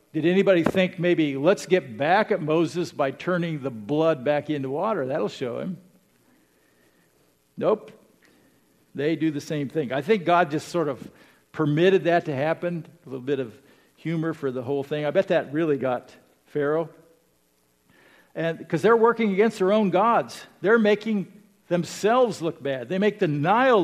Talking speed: 170 wpm